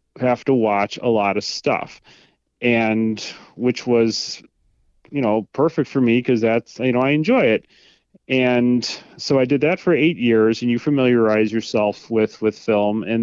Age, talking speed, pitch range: 30-49, 170 wpm, 110-125 Hz